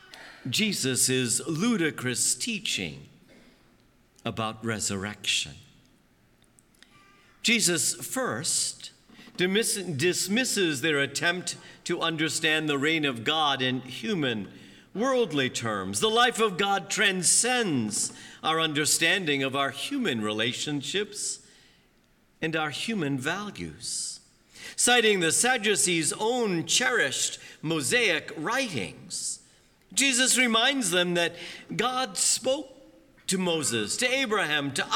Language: English